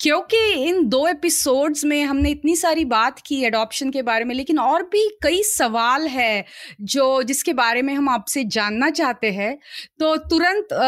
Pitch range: 245-320 Hz